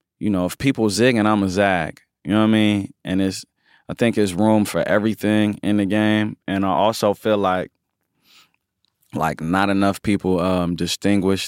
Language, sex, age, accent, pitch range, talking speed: English, male, 20-39, American, 95-110 Hz, 185 wpm